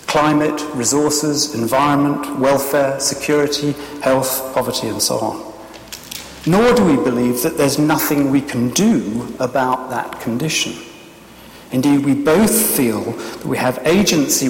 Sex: male